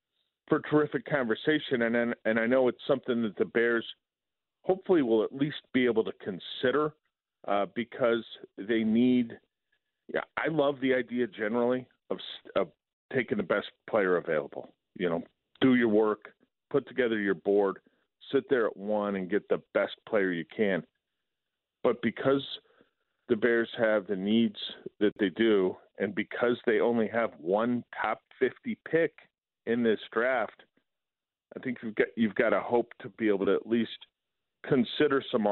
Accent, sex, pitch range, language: American, male, 105-125 Hz, English